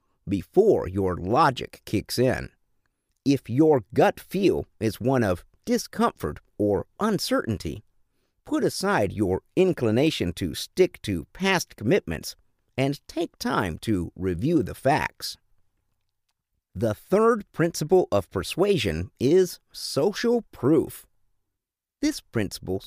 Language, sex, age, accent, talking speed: English, male, 50-69, American, 110 wpm